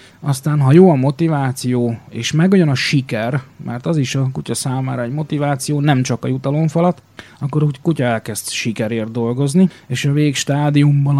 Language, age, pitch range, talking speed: Hungarian, 30-49, 120-145 Hz, 165 wpm